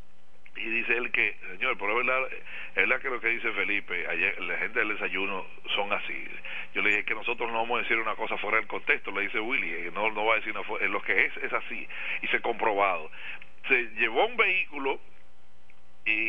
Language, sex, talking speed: Spanish, male, 205 wpm